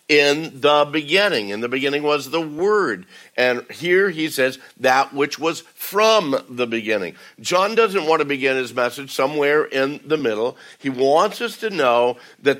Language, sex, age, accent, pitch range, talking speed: English, male, 60-79, American, 130-175 Hz, 165 wpm